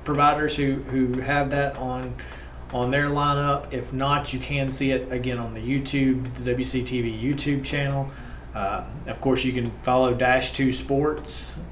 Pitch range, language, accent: 125-145 Hz, English, American